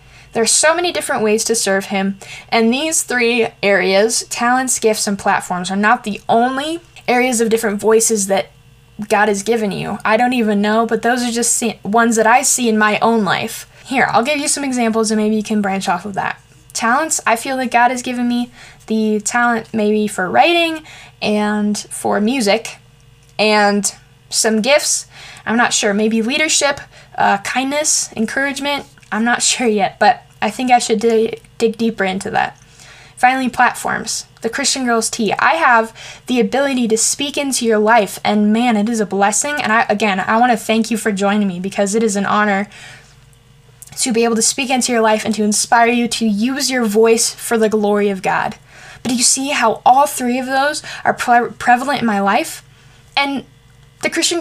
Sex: female